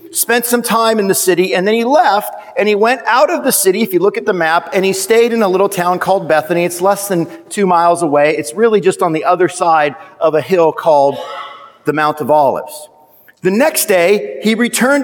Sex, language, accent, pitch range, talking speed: male, English, American, 165-215 Hz, 230 wpm